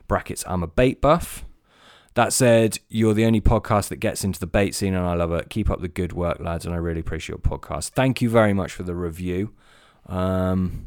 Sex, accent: male, British